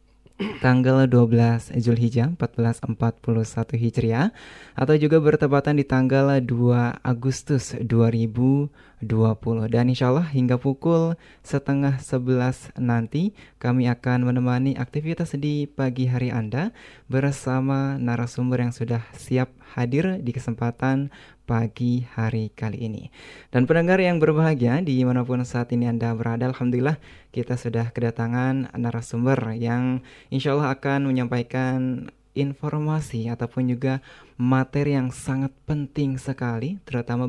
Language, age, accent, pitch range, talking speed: Indonesian, 20-39, native, 120-135 Hz, 110 wpm